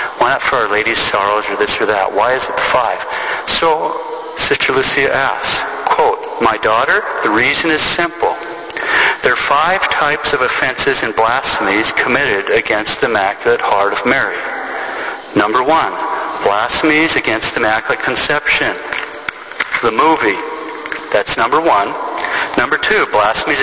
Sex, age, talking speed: male, 50-69, 140 wpm